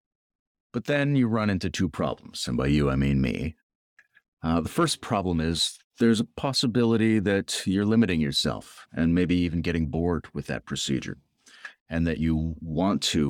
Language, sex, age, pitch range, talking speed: English, male, 40-59, 70-90 Hz, 170 wpm